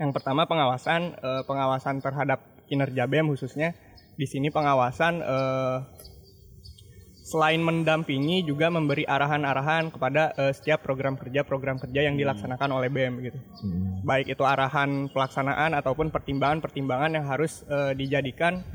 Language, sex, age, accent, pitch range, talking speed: Indonesian, male, 20-39, native, 135-155 Hz, 110 wpm